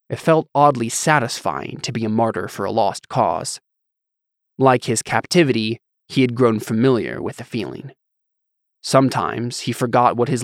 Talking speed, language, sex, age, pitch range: 155 wpm, English, male, 20-39, 110-135 Hz